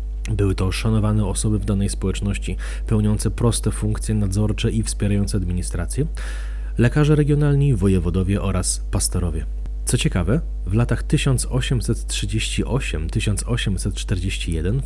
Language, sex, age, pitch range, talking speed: Polish, male, 30-49, 95-120 Hz, 95 wpm